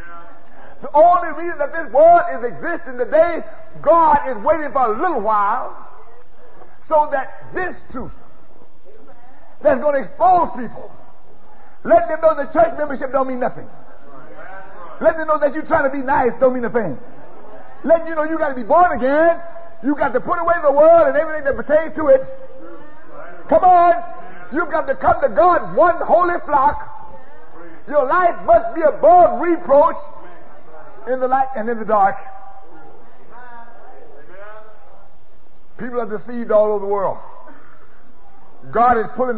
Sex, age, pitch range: male, 50-69, 230-315 Hz